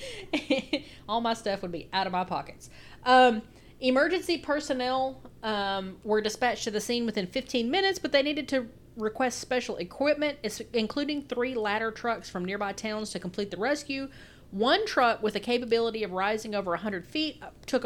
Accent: American